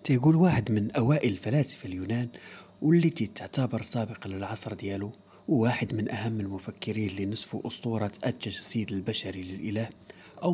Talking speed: 125 wpm